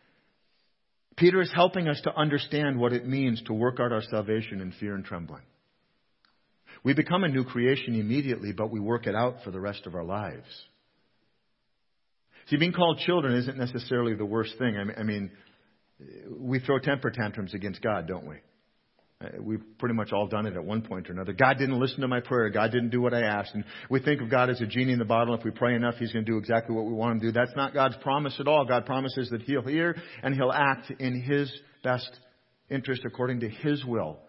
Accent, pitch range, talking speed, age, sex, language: American, 115-150 Hz, 220 wpm, 50-69, male, English